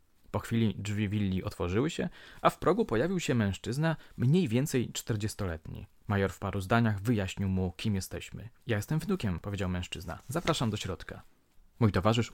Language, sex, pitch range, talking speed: Polish, male, 100-145 Hz, 160 wpm